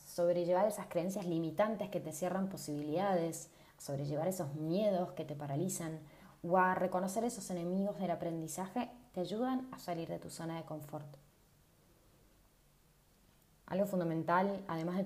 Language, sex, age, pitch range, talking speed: Spanish, female, 20-39, 160-205 Hz, 135 wpm